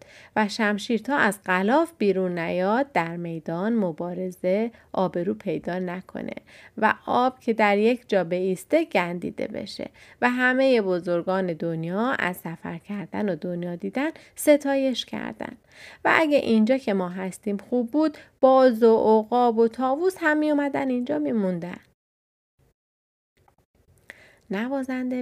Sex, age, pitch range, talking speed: female, 30-49, 180-235 Hz, 120 wpm